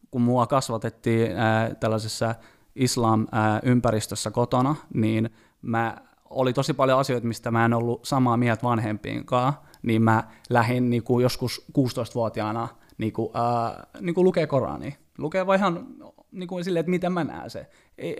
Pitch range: 110-130 Hz